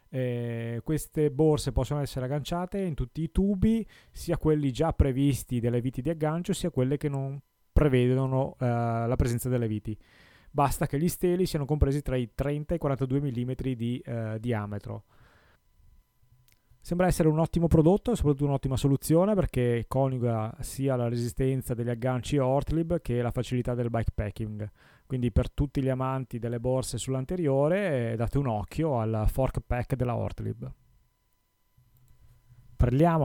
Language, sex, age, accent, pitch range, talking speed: Italian, male, 30-49, native, 115-145 Hz, 150 wpm